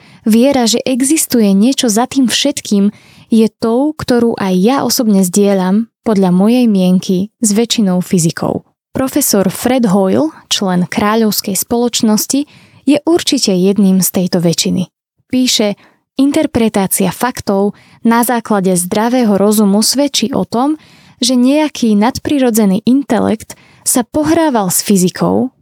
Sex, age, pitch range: female, 20-39, 195-255 Hz